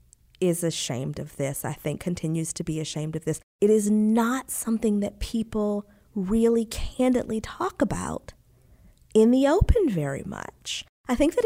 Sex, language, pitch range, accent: female, English, 180-240 Hz, American